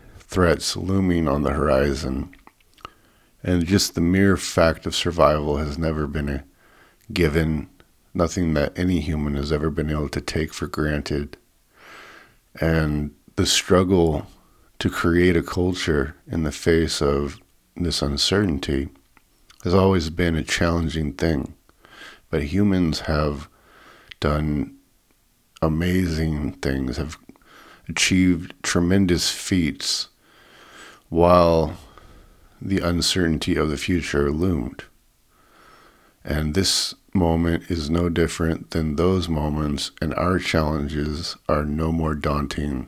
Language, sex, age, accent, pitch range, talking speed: English, male, 50-69, American, 75-90 Hz, 115 wpm